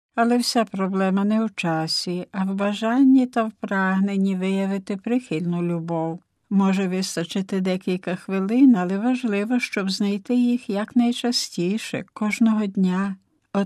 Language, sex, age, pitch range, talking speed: Ukrainian, female, 60-79, 180-225 Hz, 125 wpm